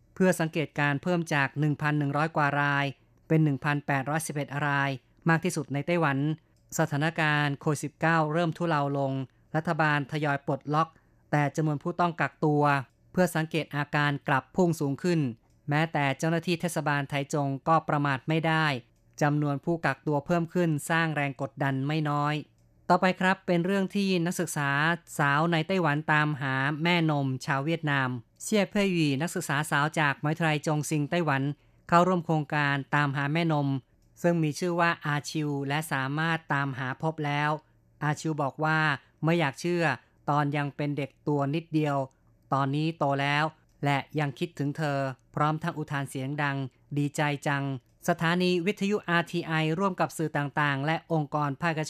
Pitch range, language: 140-165 Hz, Thai